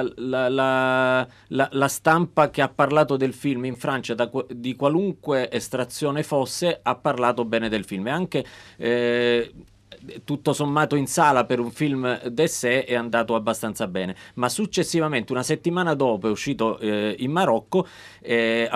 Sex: male